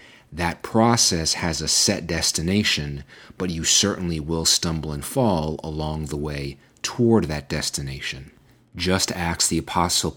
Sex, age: male, 40-59